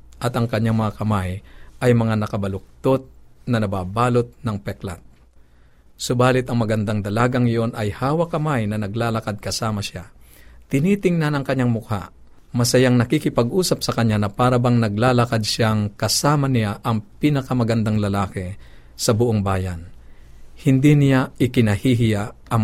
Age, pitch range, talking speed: 50-69, 95-125 Hz, 130 wpm